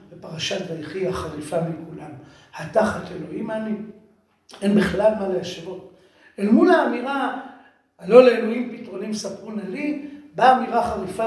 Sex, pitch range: male, 180-245 Hz